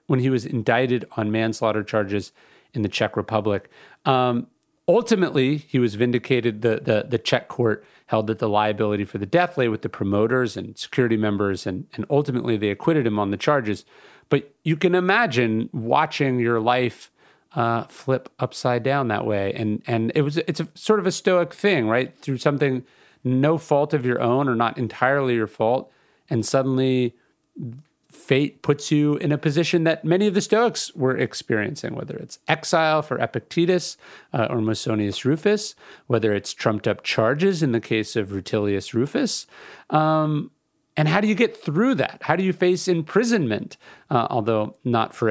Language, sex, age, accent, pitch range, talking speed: English, male, 40-59, American, 110-155 Hz, 175 wpm